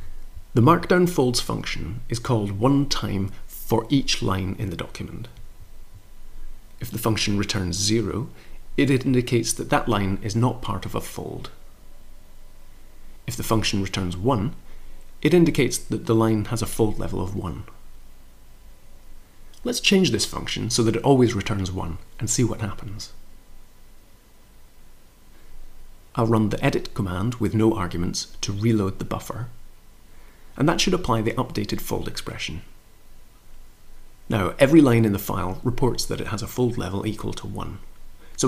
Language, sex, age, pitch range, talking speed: English, male, 30-49, 95-115 Hz, 150 wpm